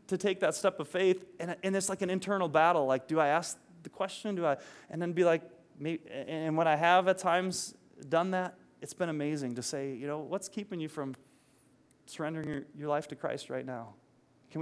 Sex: male